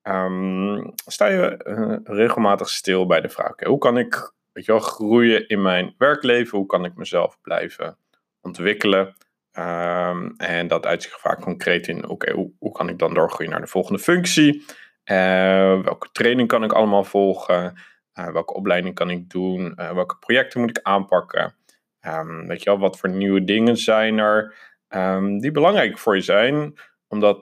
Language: Dutch